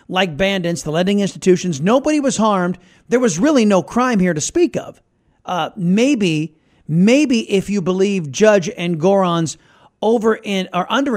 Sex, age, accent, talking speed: male, 40-59, American, 160 wpm